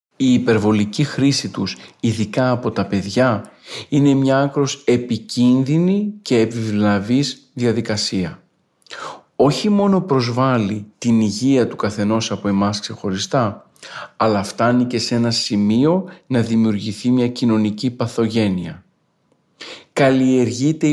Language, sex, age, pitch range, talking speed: Greek, male, 40-59, 115-140 Hz, 105 wpm